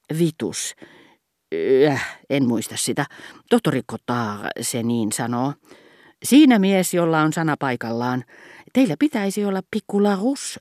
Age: 40-59